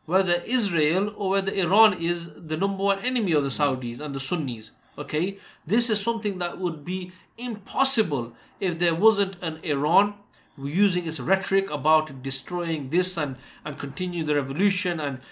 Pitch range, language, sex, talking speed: 150-200 Hz, English, male, 160 wpm